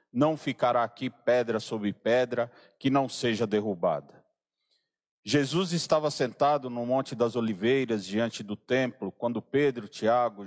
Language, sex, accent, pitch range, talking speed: Portuguese, male, Brazilian, 120-150 Hz, 130 wpm